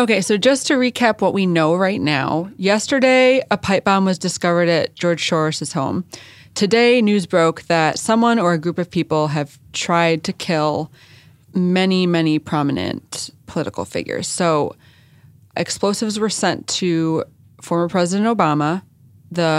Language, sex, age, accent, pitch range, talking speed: English, female, 20-39, American, 150-195 Hz, 145 wpm